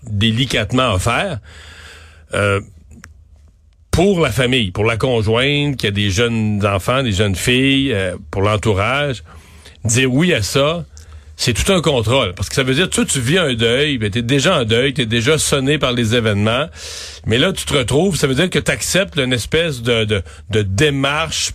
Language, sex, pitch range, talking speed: French, male, 110-150 Hz, 185 wpm